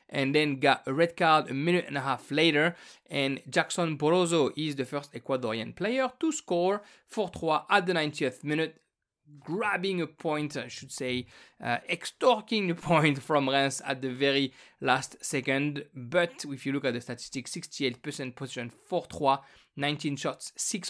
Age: 20-39